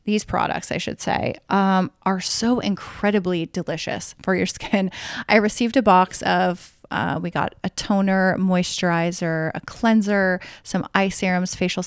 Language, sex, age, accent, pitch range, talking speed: English, female, 30-49, American, 185-235 Hz, 150 wpm